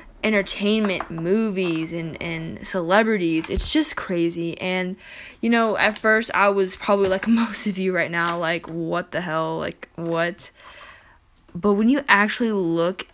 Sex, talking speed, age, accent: female, 150 wpm, 10-29, American